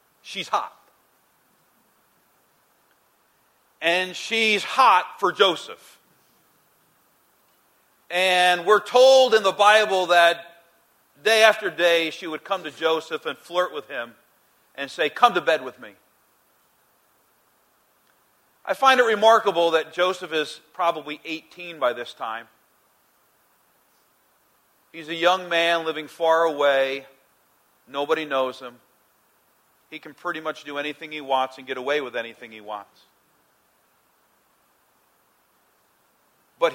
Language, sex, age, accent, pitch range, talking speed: English, male, 40-59, American, 145-185 Hz, 115 wpm